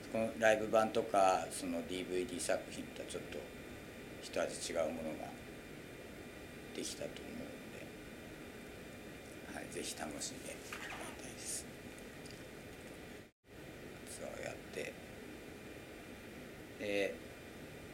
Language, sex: Japanese, male